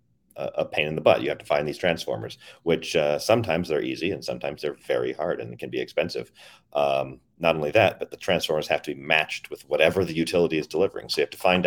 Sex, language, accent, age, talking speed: male, English, American, 40-59, 240 wpm